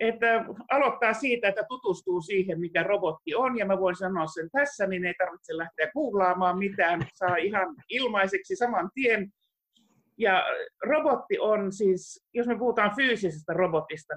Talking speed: 150 wpm